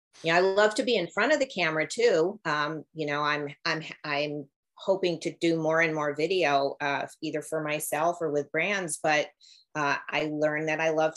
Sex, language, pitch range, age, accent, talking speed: female, English, 140-165 Hz, 40-59, American, 215 wpm